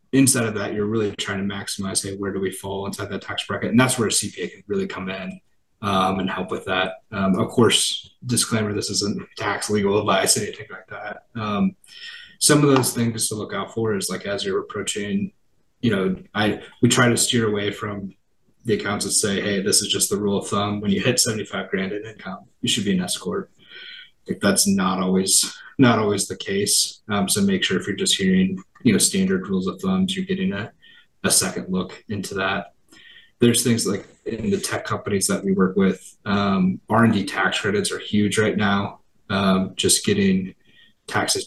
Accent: American